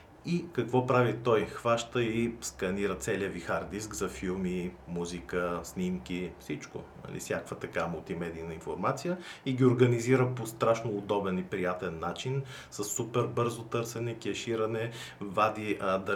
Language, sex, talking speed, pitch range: Bulgarian, male, 130 wpm, 95-125 Hz